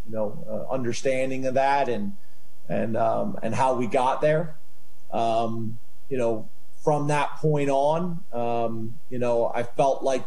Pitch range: 120-150 Hz